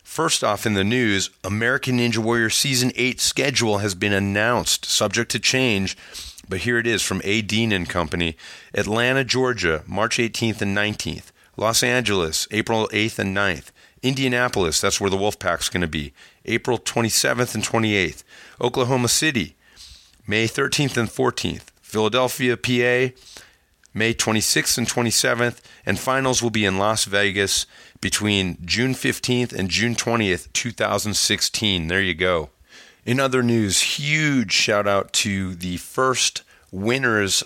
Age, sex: 40-59, male